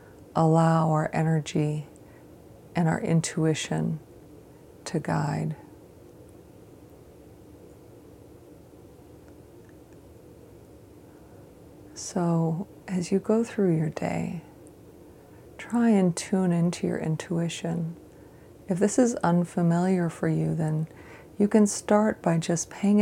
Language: English